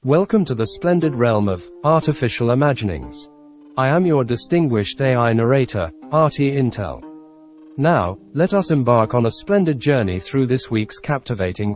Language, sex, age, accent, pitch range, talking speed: English, male, 40-59, British, 110-150 Hz, 145 wpm